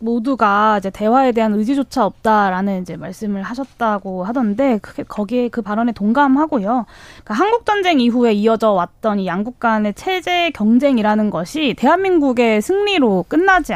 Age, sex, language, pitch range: 20-39, female, Korean, 220-305 Hz